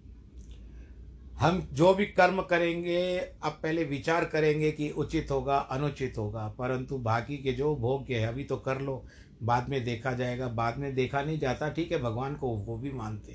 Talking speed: 180 wpm